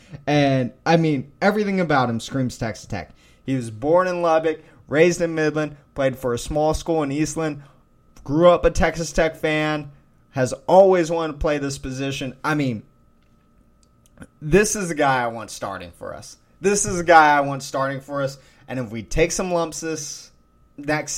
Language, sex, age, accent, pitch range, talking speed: English, male, 20-39, American, 130-170 Hz, 185 wpm